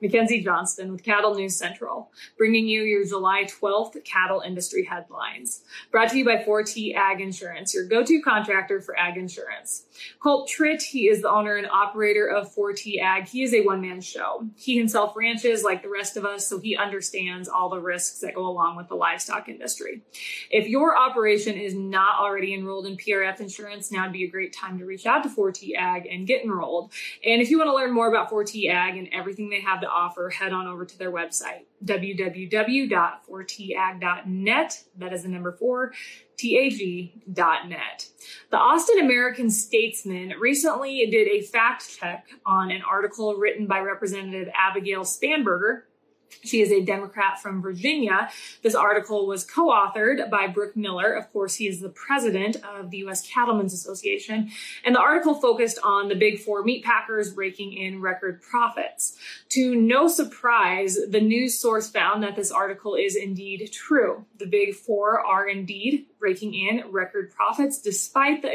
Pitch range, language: 190-230 Hz, English